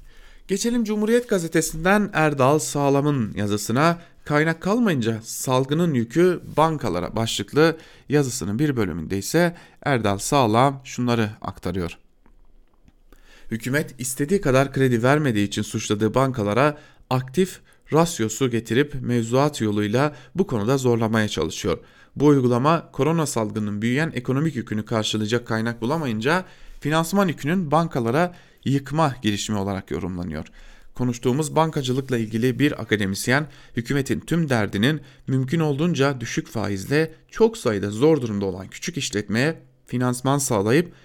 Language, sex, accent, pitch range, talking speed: German, male, Turkish, 110-155 Hz, 110 wpm